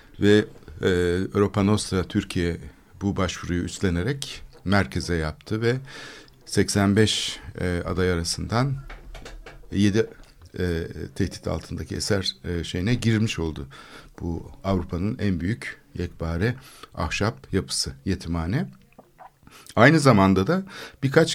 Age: 60-79